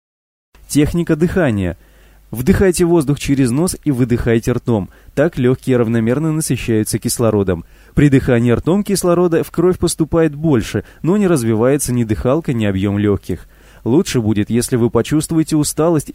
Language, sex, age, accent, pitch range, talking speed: Russian, male, 20-39, native, 110-150 Hz, 135 wpm